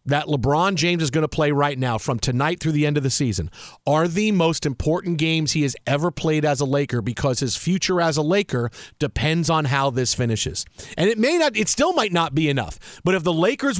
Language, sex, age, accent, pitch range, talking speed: English, male, 40-59, American, 145-205 Hz, 235 wpm